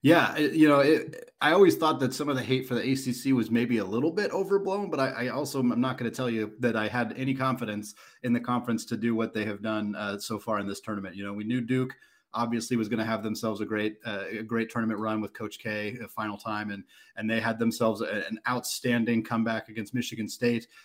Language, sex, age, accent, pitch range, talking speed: English, male, 30-49, American, 105-120 Hz, 250 wpm